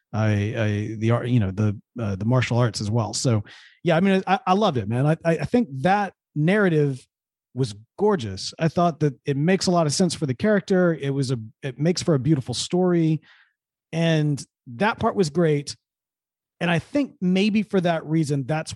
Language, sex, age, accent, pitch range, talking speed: English, male, 40-59, American, 130-200 Hz, 200 wpm